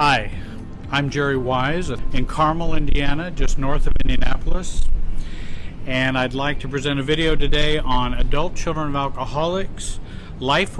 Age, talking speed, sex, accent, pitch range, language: 50-69, 140 wpm, male, American, 110-150 Hz, English